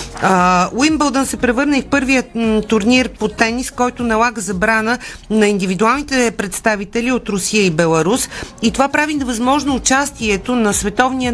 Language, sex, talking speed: Bulgarian, female, 130 wpm